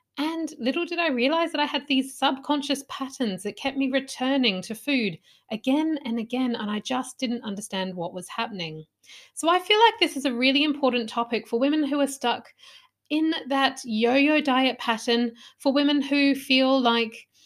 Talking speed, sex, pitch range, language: 180 wpm, female, 215-275 Hz, English